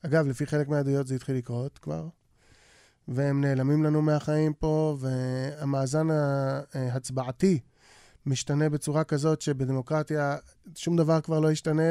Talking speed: 120 wpm